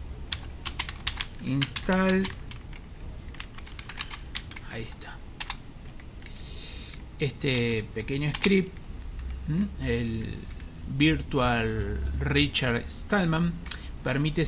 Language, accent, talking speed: Spanish, Argentinian, 45 wpm